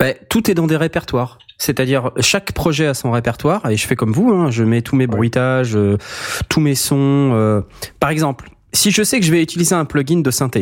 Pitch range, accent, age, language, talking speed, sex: 105-145 Hz, French, 20-39, French, 230 wpm, male